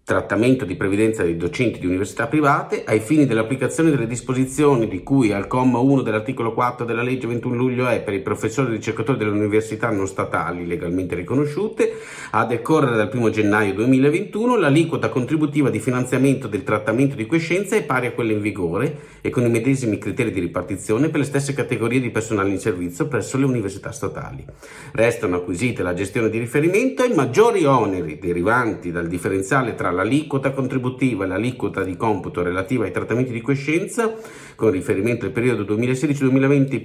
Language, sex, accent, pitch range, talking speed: Italian, male, native, 105-140 Hz, 170 wpm